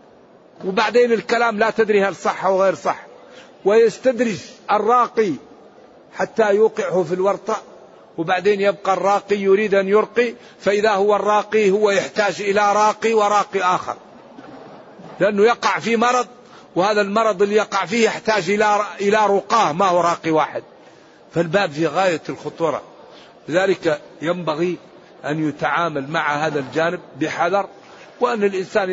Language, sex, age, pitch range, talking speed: Arabic, male, 50-69, 185-220 Hz, 125 wpm